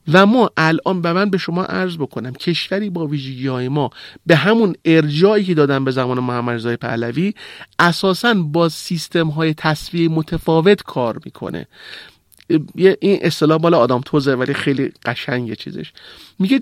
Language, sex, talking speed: Persian, male, 150 wpm